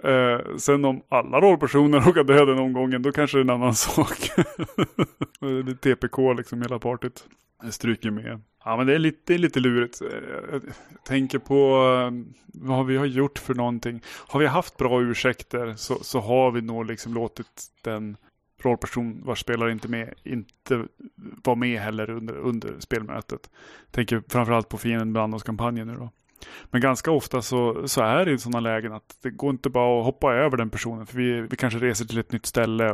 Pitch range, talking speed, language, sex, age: 115-130 Hz, 195 wpm, Swedish, male, 20-39